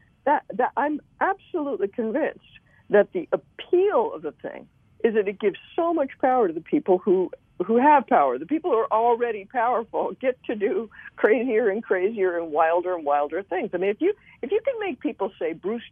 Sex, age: female, 50-69